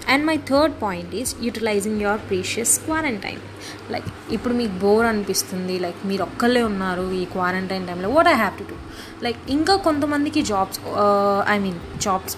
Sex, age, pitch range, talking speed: female, 20-39, 195-230 Hz, 180 wpm